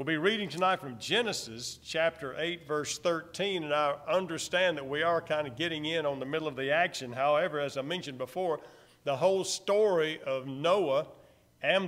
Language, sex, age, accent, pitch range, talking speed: English, male, 50-69, American, 140-185 Hz, 185 wpm